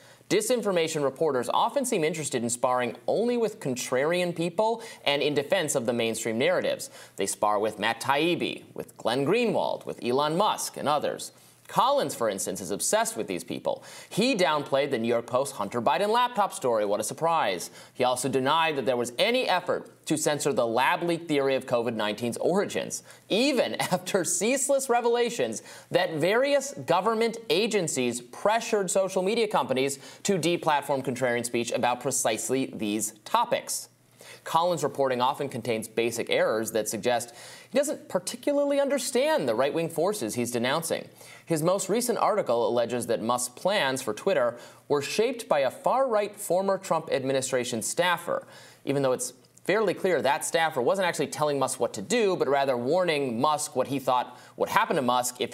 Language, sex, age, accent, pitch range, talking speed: English, male, 30-49, American, 120-190 Hz, 165 wpm